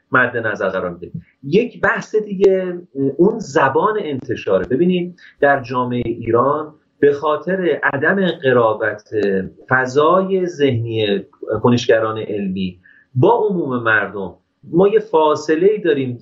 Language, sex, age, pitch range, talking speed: Persian, male, 30-49, 130-195 Hz, 100 wpm